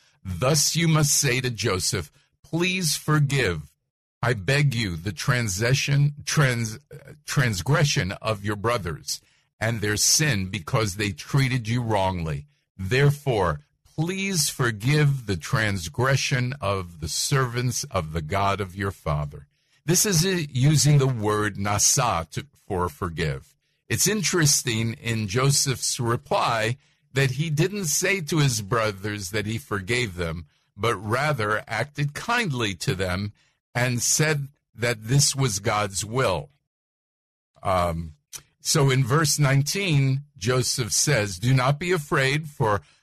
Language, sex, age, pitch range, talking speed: English, male, 50-69, 110-145 Hz, 125 wpm